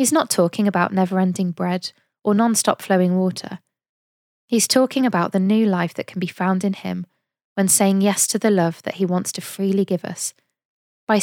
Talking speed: 190 wpm